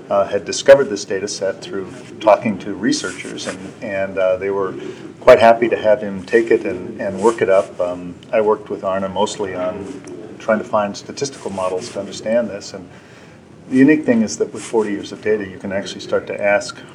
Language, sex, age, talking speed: English, male, 40-59, 210 wpm